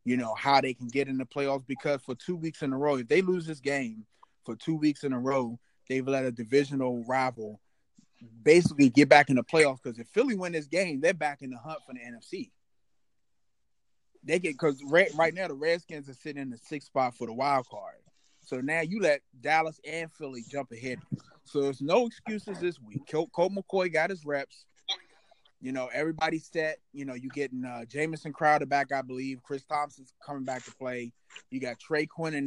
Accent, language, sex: American, English, male